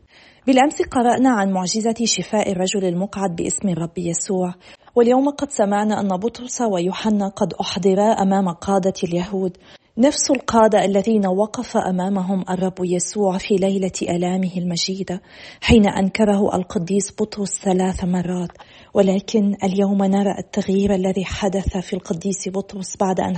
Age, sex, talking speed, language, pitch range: 40-59, female, 125 wpm, Arabic, 190-215 Hz